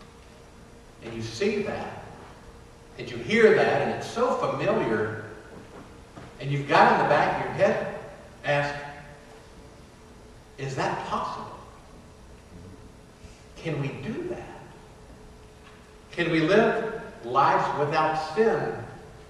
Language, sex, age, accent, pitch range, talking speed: English, male, 50-69, American, 120-160 Hz, 110 wpm